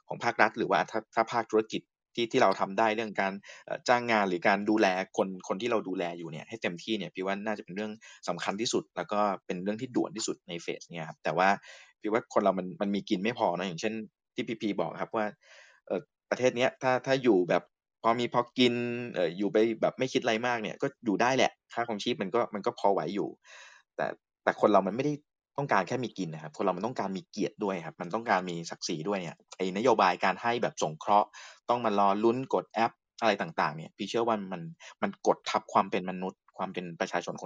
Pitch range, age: 90-115 Hz, 20-39